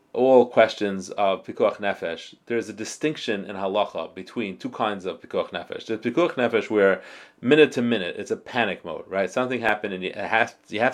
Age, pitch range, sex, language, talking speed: 30-49, 100-125 Hz, male, English, 180 wpm